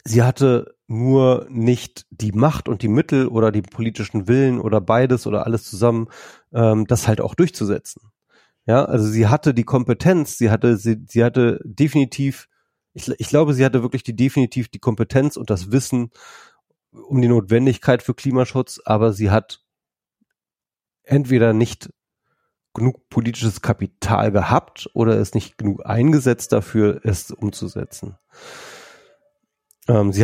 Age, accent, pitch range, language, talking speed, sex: 30-49, German, 105-125 Hz, German, 140 wpm, male